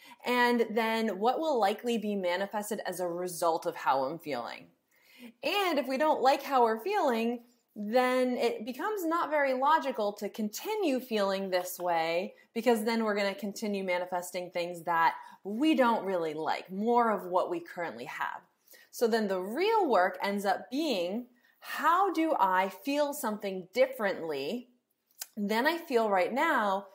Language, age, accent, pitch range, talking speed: English, 20-39, American, 195-270 Hz, 155 wpm